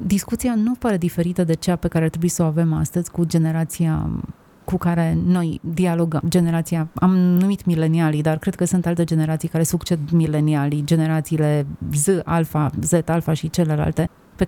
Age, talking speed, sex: 30-49, 165 wpm, female